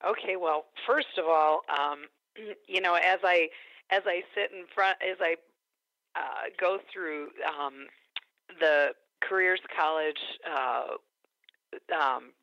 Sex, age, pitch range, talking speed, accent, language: female, 50-69, 155-185 Hz, 125 wpm, American, English